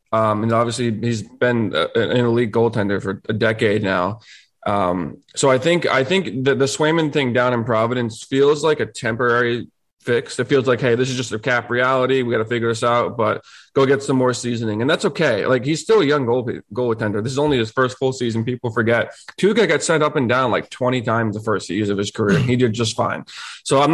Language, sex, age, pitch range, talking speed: English, male, 20-39, 110-130 Hz, 235 wpm